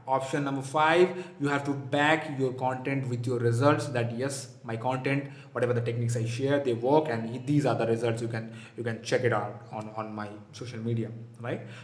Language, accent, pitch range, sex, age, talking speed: English, Indian, 130-160 Hz, male, 20-39, 210 wpm